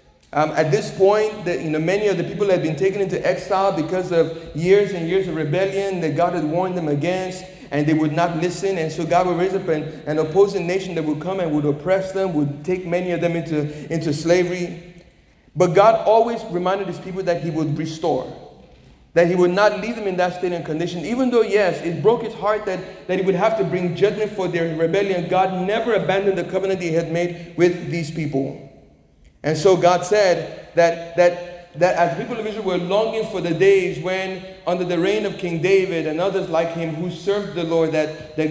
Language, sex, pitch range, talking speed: English, male, 165-195 Hz, 220 wpm